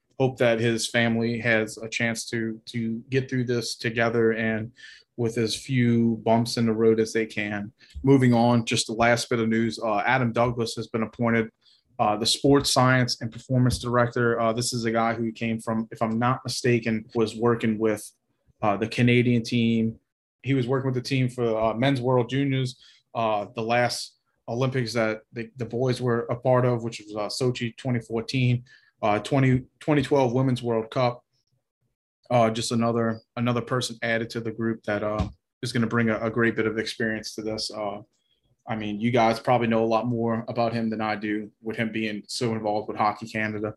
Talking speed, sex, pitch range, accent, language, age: 195 wpm, male, 110-125 Hz, American, English, 30-49